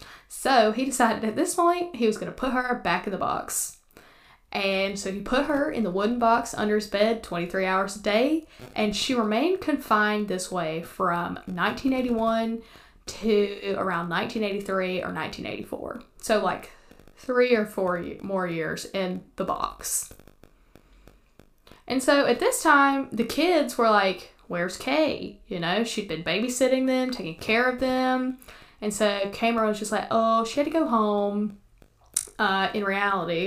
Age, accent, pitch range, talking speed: 10-29, American, 200-255 Hz, 165 wpm